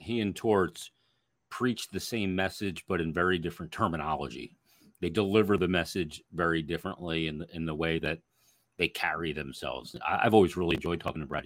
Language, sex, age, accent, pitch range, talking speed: English, male, 40-59, American, 90-120 Hz, 185 wpm